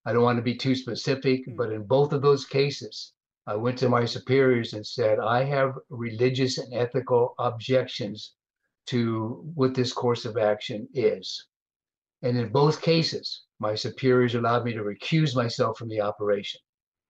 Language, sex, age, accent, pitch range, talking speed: English, male, 50-69, American, 120-135 Hz, 160 wpm